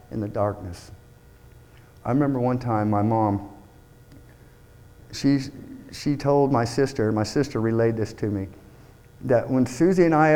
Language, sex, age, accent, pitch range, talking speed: English, male, 50-69, American, 115-150 Hz, 145 wpm